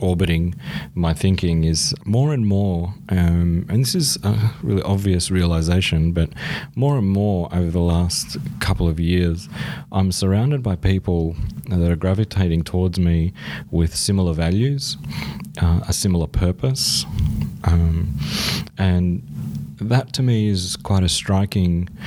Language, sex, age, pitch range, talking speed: English, male, 30-49, 85-100 Hz, 135 wpm